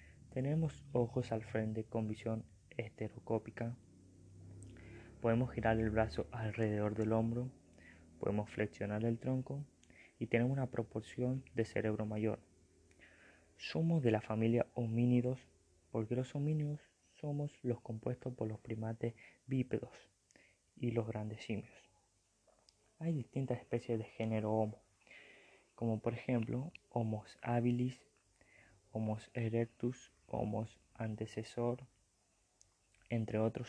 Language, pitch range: Spanish, 110-120 Hz